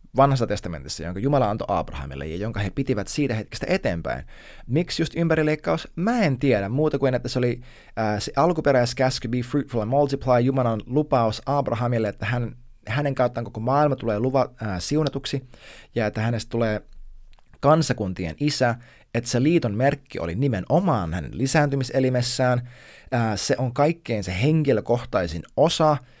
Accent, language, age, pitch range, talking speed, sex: native, Finnish, 20-39, 105-140 Hz, 145 wpm, male